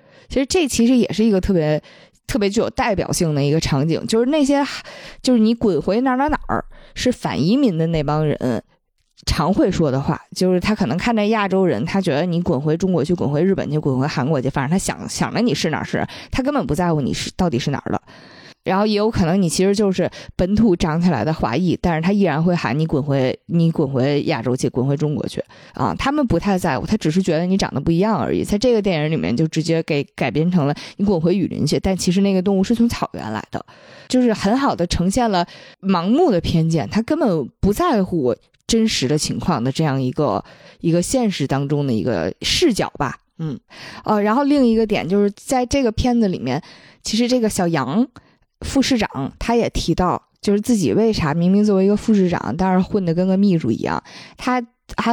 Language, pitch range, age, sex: Chinese, 160-225 Hz, 20-39, female